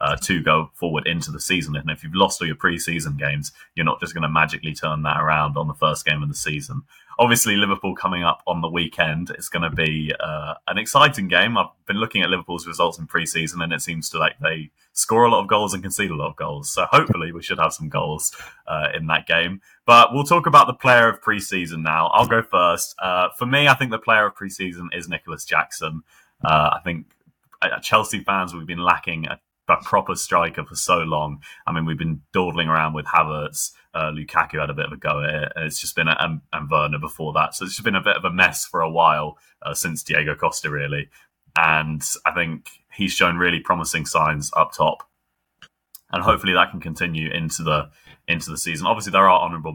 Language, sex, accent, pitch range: English, male, British, 75-90 Hz